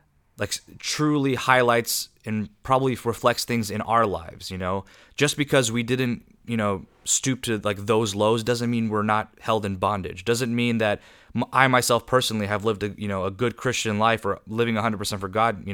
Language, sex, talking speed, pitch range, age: English, male, 190 wpm, 100-120 Hz, 20-39